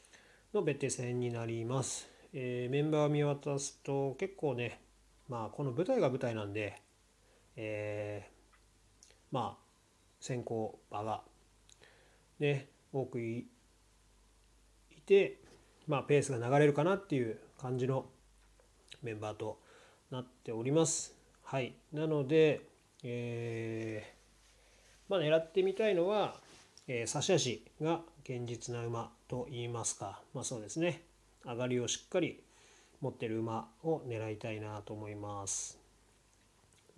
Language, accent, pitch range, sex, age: Japanese, native, 115-145 Hz, male, 30-49